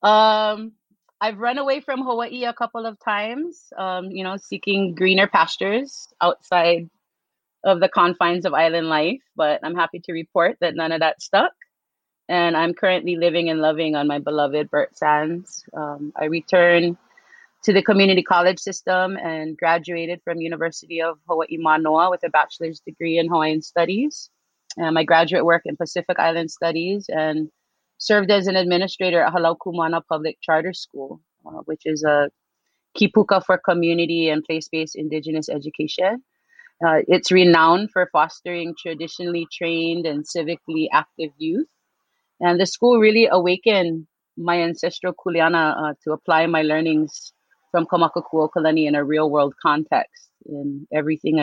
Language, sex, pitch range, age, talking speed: English, female, 160-195 Hz, 30-49, 150 wpm